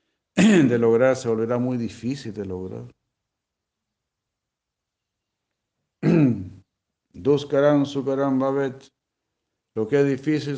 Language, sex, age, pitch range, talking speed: Spanish, male, 60-79, 110-140 Hz, 85 wpm